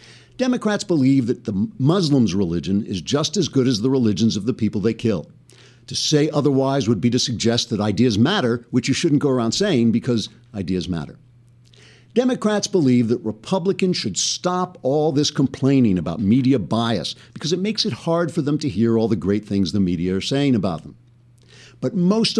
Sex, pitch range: male, 105-140 Hz